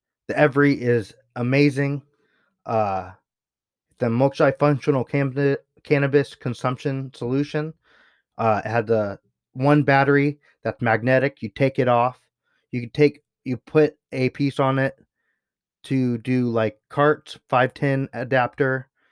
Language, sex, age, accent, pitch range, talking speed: English, male, 20-39, American, 120-140 Hz, 120 wpm